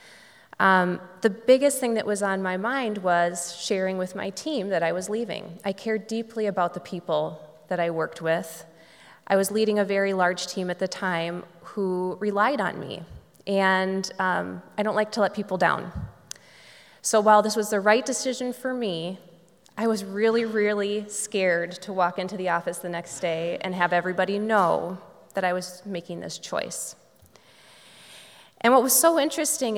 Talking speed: 175 wpm